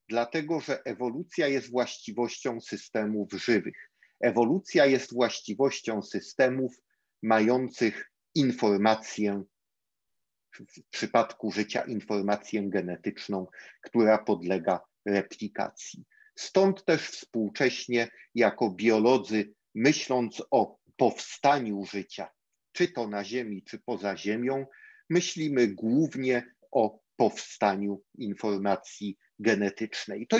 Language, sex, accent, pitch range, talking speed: Polish, male, native, 105-130 Hz, 85 wpm